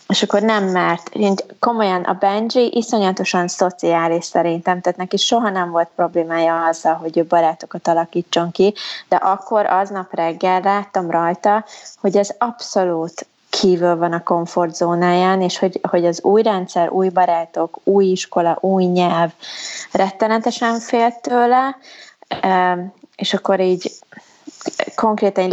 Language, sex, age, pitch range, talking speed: Hungarian, female, 20-39, 175-200 Hz, 130 wpm